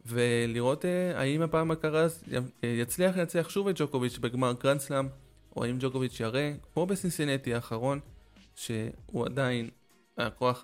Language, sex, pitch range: Hebrew, male, 120-145 Hz